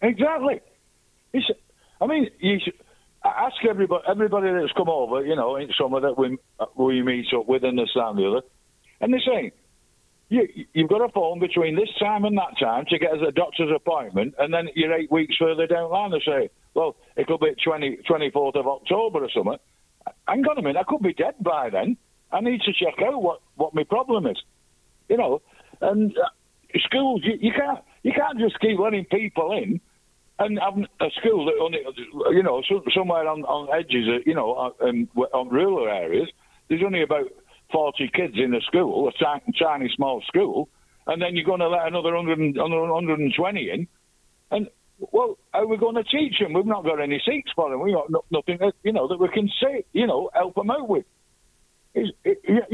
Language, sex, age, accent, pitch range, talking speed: English, male, 50-69, British, 145-245 Hz, 200 wpm